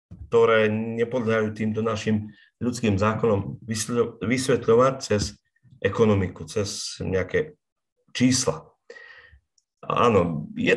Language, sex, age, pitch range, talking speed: Slovak, male, 40-59, 105-140 Hz, 80 wpm